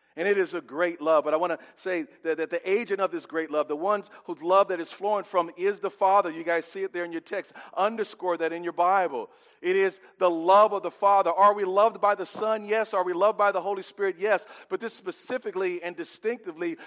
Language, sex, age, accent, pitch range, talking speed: English, male, 40-59, American, 130-195 Hz, 250 wpm